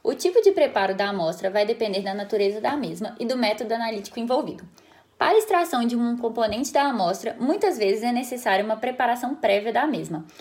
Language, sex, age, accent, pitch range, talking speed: Portuguese, female, 10-29, Brazilian, 220-285 Hz, 195 wpm